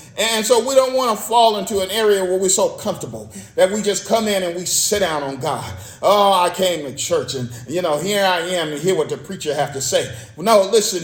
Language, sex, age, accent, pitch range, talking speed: English, male, 40-59, American, 175-220 Hz, 255 wpm